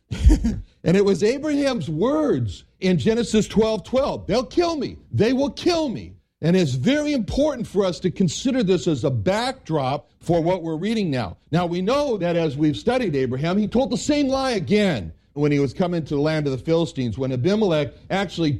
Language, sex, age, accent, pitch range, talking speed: English, male, 60-79, American, 150-220 Hz, 195 wpm